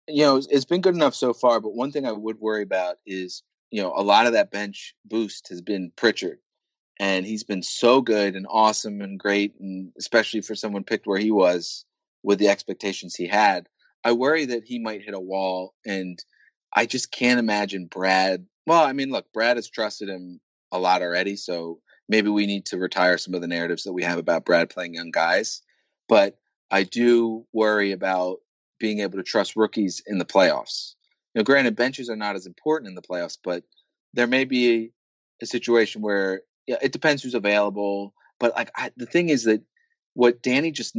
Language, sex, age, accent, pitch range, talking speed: English, male, 30-49, American, 95-120 Hz, 200 wpm